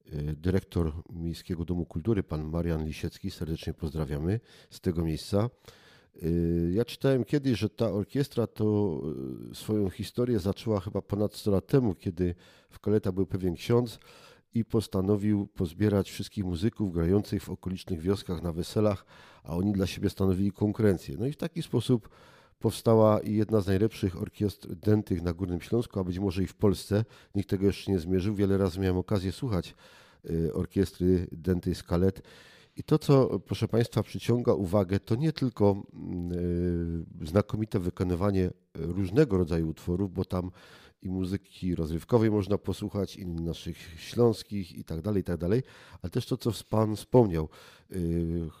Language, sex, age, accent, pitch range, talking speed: Polish, male, 50-69, native, 90-110 Hz, 140 wpm